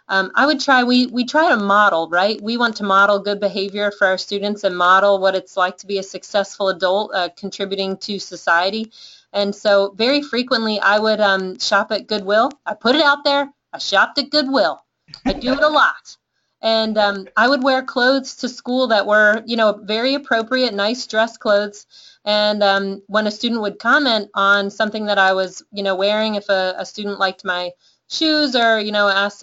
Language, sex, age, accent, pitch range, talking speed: English, female, 30-49, American, 205-260 Hz, 205 wpm